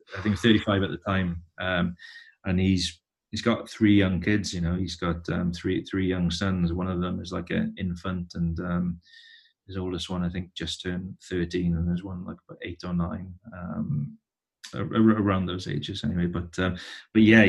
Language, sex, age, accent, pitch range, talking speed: English, male, 30-49, British, 85-95 Hz, 195 wpm